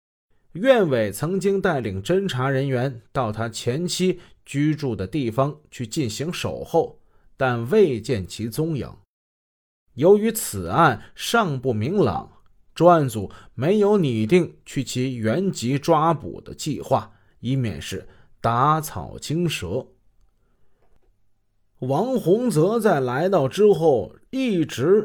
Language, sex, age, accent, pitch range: Chinese, male, 30-49, native, 110-175 Hz